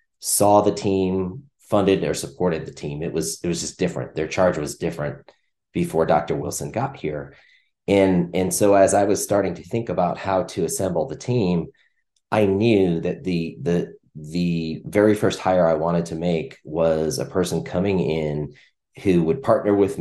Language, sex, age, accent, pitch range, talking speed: English, male, 30-49, American, 80-100 Hz, 180 wpm